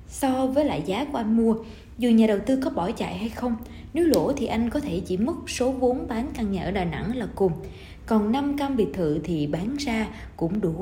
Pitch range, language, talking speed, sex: 180-240 Hz, Vietnamese, 245 wpm, female